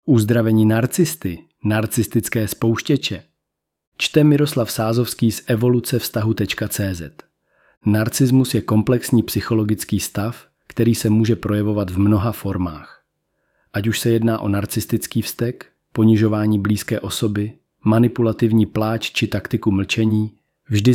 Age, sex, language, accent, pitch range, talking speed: 40-59, male, Czech, native, 105-115 Hz, 105 wpm